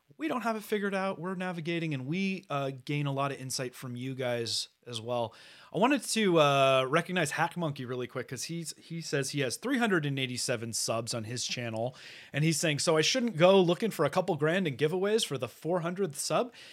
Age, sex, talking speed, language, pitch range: 30-49, male, 210 wpm, English, 130-180 Hz